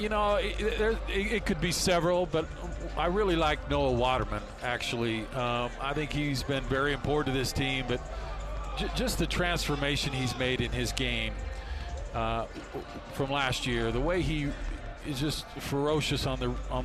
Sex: male